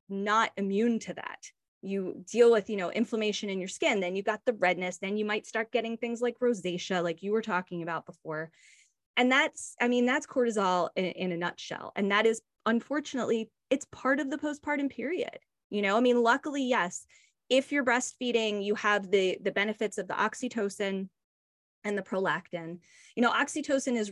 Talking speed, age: 190 wpm, 20-39